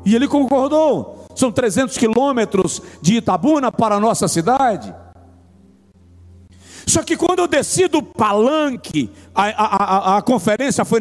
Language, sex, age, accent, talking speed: Portuguese, male, 60-79, Brazilian, 135 wpm